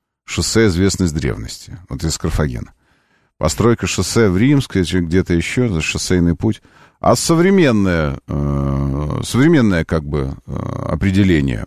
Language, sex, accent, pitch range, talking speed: Russian, male, native, 80-135 Hz, 105 wpm